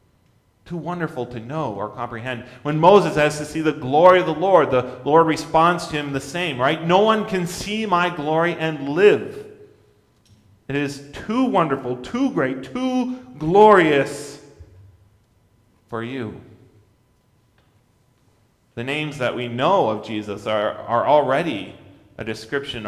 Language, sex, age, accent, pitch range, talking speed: English, male, 40-59, American, 110-160 Hz, 140 wpm